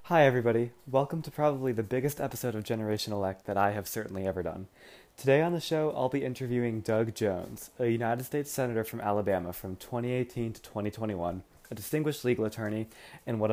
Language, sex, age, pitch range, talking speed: English, male, 20-39, 105-135 Hz, 185 wpm